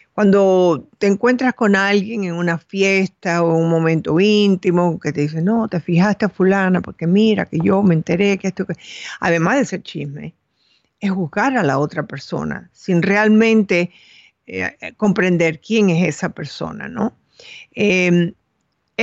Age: 50-69